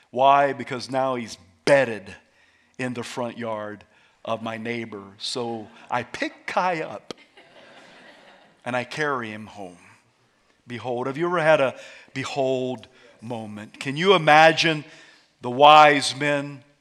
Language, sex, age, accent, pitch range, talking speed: English, male, 50-69, American, 125-175 Hz, 130 wpm